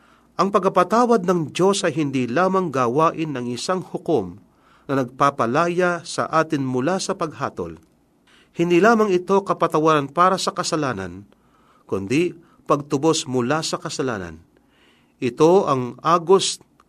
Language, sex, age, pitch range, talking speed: Filipino, male, 40-59, 130-175 Hz, 115 wpm